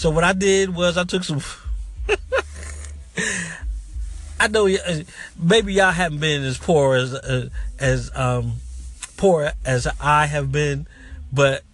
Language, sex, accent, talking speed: English, male, American, 130 wpm